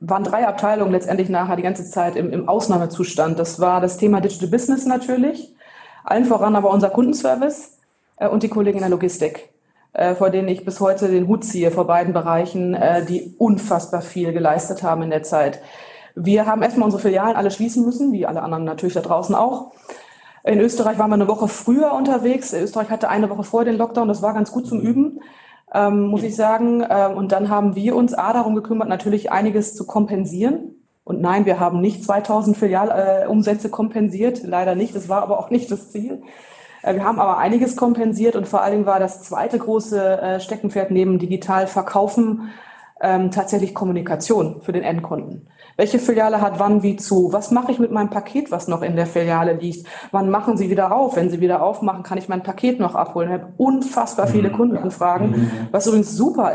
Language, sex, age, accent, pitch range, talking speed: German, female, 20-39, German, 185-225 Hz, 195 wpm